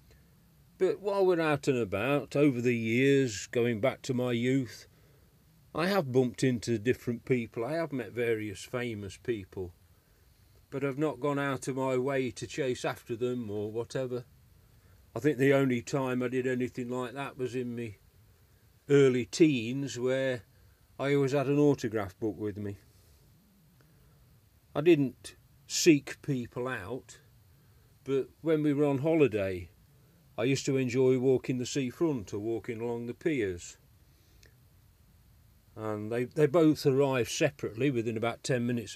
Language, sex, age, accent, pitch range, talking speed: English, male, 40-59, British, 110-140 Hz, 150 wpm